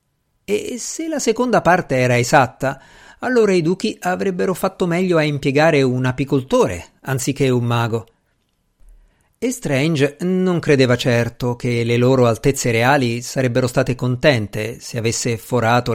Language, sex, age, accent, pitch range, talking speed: Italian, male, 50-69, native, 120-185 Hz, 135 wpm